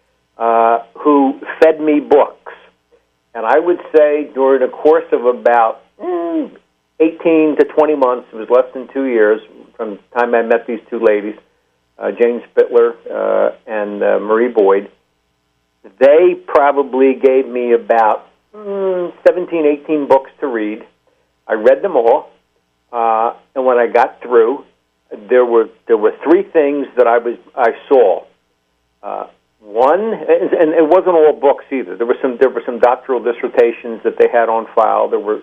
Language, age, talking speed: English, 60-79, 165 wpm